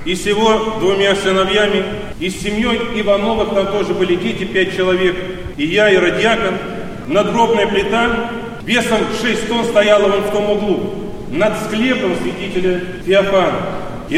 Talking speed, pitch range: 140 wpm, 200-225 Hz